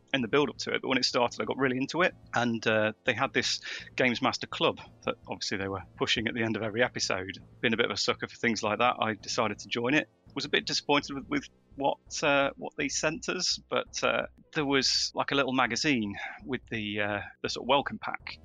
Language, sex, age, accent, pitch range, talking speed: English, male, 30-49, British, 110-140 Hz, 250 wpm